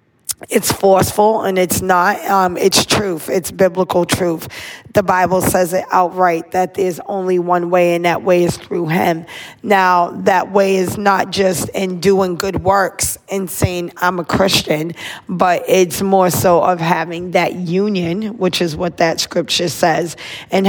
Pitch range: 175-195 Hz